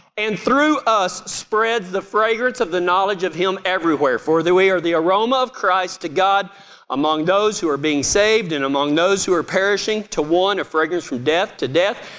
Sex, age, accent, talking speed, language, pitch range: male, 40-59, American, 200 wpm, English, 175-230 Hz